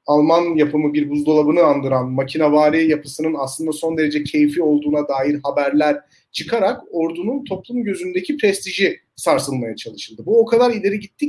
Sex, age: male, 40-59